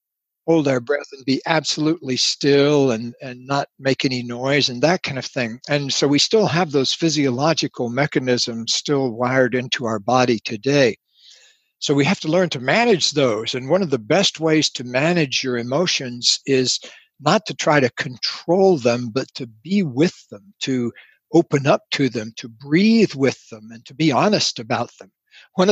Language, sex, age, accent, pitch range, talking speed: English, male, 60-79, American, 125-150 Hz, 180 wpm